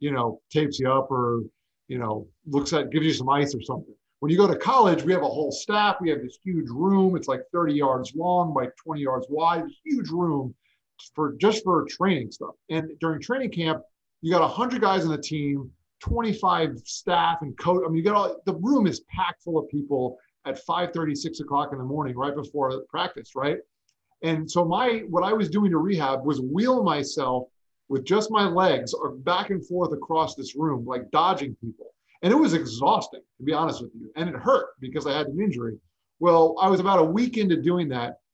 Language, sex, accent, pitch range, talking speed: English, male, American, 135-190 Hz, 220 wpm